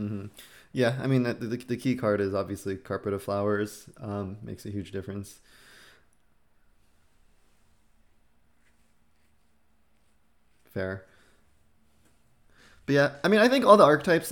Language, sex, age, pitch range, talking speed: English, male, 20-39, 105-130 Hz, 120 wpm